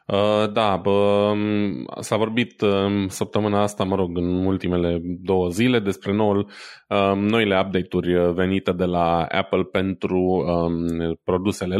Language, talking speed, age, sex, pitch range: Romanian, 105 wpm, 20-39, male, 95-110 Hz